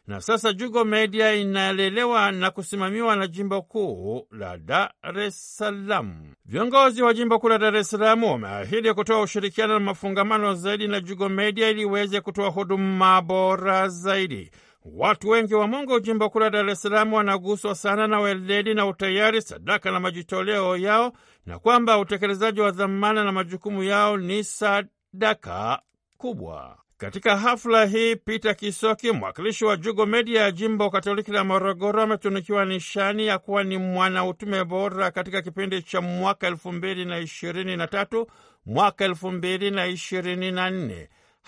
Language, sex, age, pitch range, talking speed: Swahili, male, 60-79, 190-215 Hz, 135 wpm